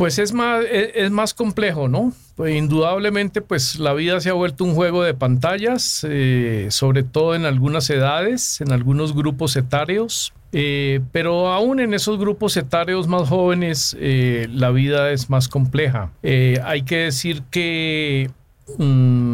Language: Spanish